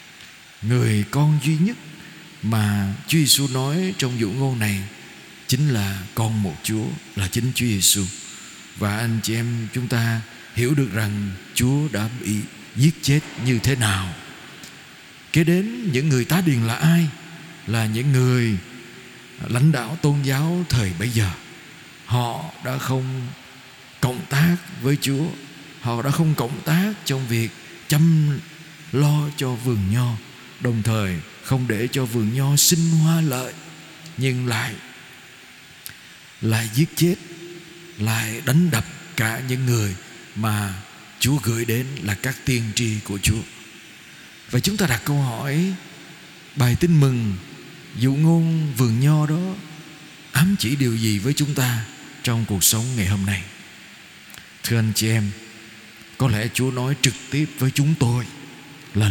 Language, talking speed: Vietnamese, 150 wpm